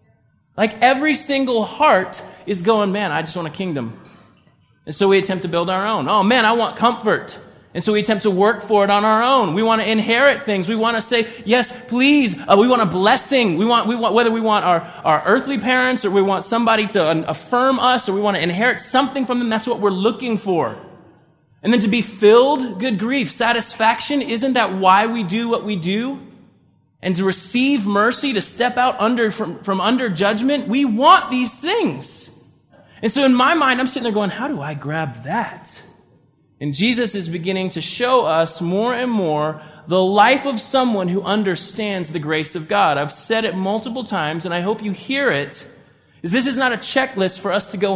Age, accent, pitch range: 30-49, American, 185-245 Hz